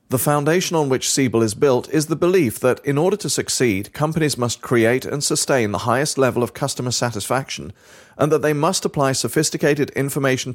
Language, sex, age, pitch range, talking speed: English, male, 40-59, 115-150 Hz, 190 wpm